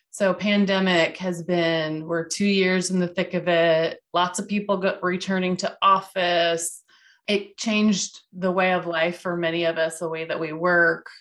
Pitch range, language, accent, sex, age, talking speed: 175-210 Hz, English, American, female, 20-39, 175 wpm